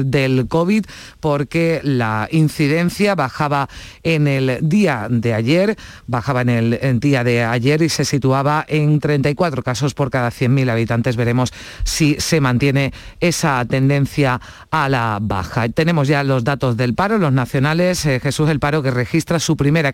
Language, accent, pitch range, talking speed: Spanish, Spanish, 130-175 Hz, 155 wpm